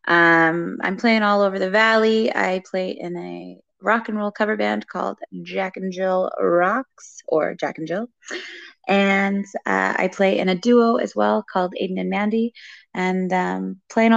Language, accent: English, American